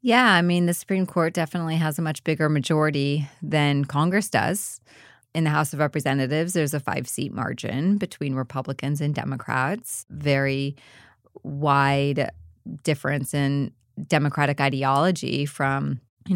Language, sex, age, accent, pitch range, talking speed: English, female, 20-39, American, 145-185 Hz, 130 wpm